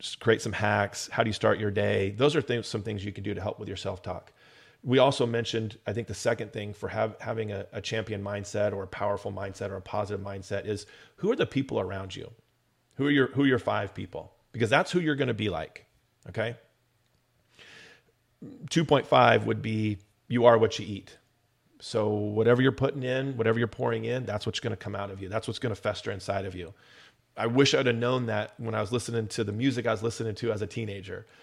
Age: 30-49